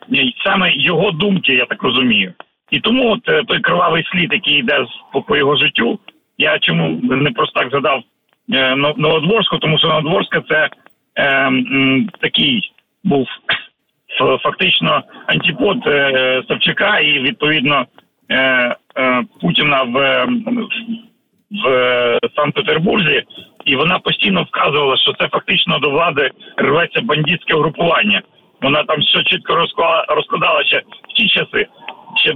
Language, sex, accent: Ukrainian, male, native